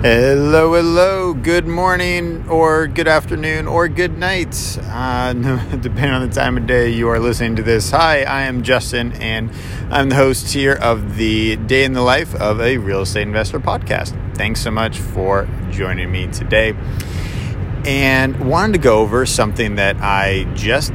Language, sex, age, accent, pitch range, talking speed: English, male, 30-49, American, 100-125 Hz, 170 wpm